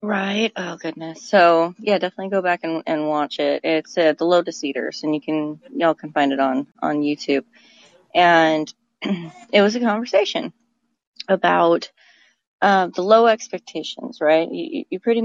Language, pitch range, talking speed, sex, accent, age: English, 160-220 Hz, 165 wpm, female, American, 30-49